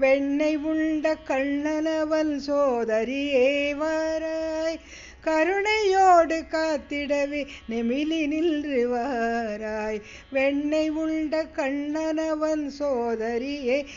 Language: Tamil